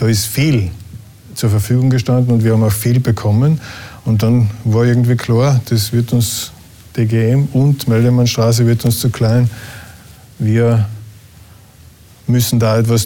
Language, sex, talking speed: German, male, 140 wpm